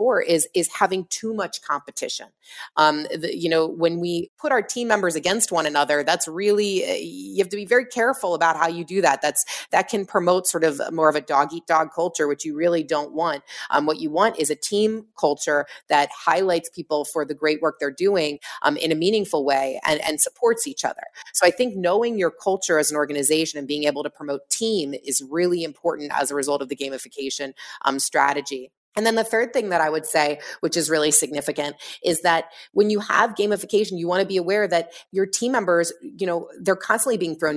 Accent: American